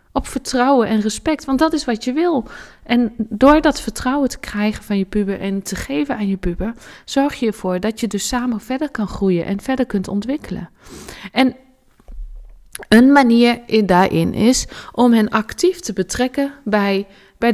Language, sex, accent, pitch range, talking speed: Dutch, female, Dutch, 200-250 Hz, 180 wpm